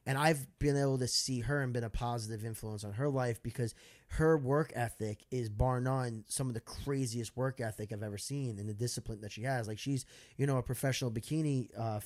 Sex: male